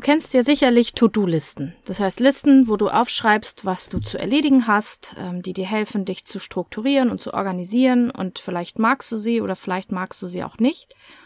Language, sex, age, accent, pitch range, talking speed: German, female, 30-49, German, 195-245 Hz, 195 wpm